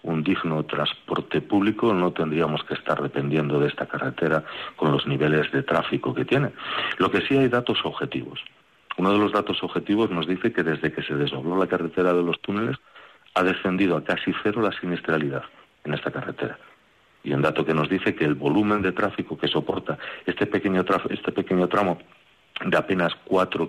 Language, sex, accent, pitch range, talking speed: Spanish, male, Spanish, 75-100 Hz, 180 wpm